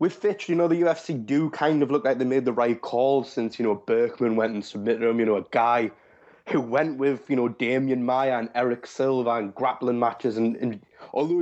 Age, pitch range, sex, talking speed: 20-39, 115-155 Hz, male, 230 wpm